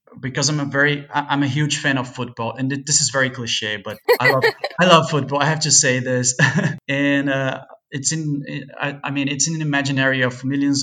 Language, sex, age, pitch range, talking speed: English, male, 20-39, 125-145 Hz, 210 wpm